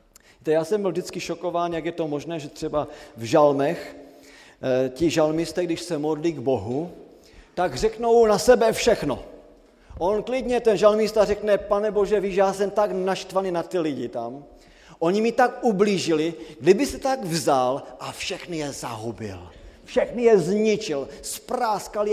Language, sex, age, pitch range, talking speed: Slovak, male, 40-59, 150-220 Hz, 155 wpm